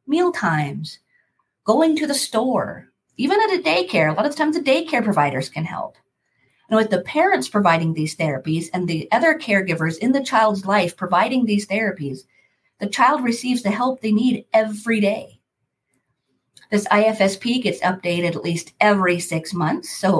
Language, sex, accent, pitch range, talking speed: English, female, American, 170-225 Hz, 165 wpm